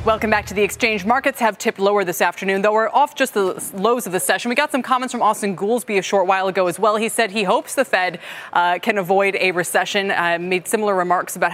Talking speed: 255 wpm